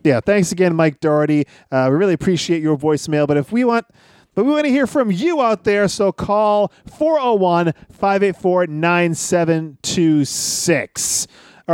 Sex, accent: male, American